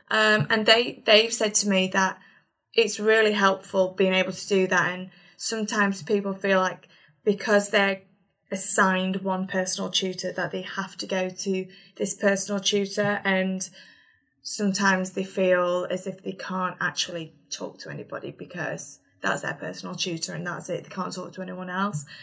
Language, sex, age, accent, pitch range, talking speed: English, female, 20-39, British, 180-195 Hz, 165 wpm